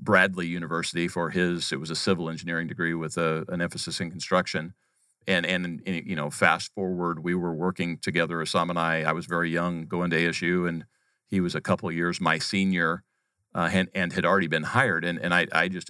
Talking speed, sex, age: 220 wpm, male, 40-59